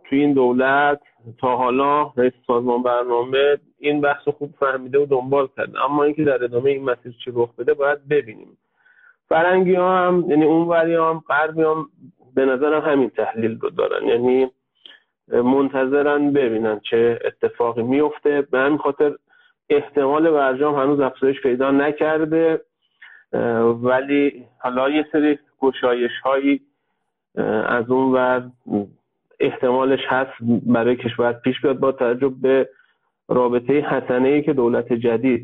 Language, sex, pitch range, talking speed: Persian, male, 125-150 Hz, 130 wpm